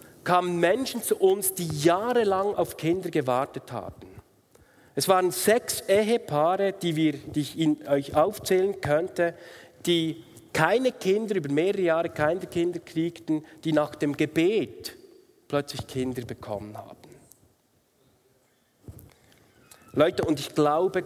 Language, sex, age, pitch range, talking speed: German, male, 40-59, 145-190 Hz, 125 wpm